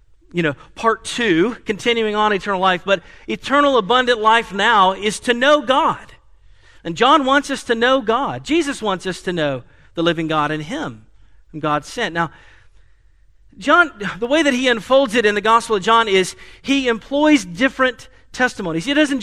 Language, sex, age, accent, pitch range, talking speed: English, male, 40-59, American, 175-245 Hz, 180 wpm